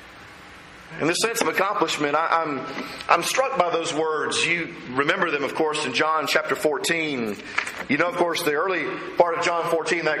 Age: 40-59